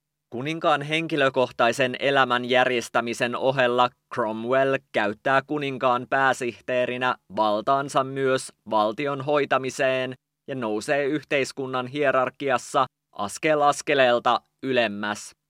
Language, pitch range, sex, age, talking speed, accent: English, 120-145 Hz, male, 20-39, 75 wpm, Finnish